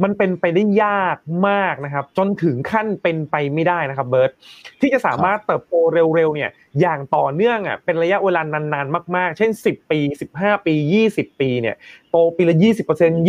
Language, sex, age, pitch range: Thai, male, 20-39, 155-200 Hz